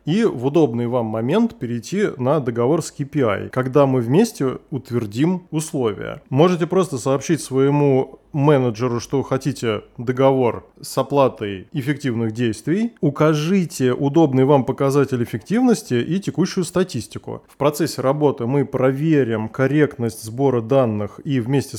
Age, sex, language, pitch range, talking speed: 20-39, male, Russian, 125-165 Hz, 125 wpm